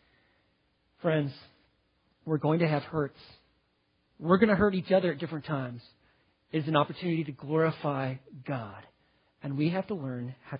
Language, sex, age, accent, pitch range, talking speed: English, male, 40-59, American, 130-175 Hz, 155 wpm